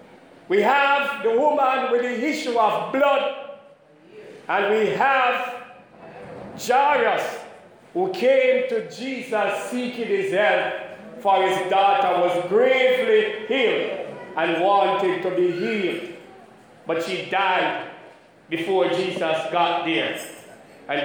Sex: male